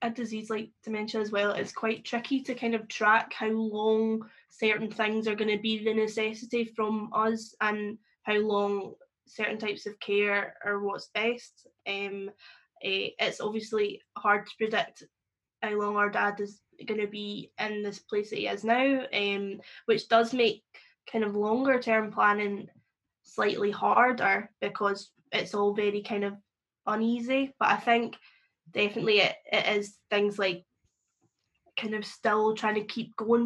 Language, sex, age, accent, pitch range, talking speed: English, female, 10-29, British, 205-225 Hz, 165 wpm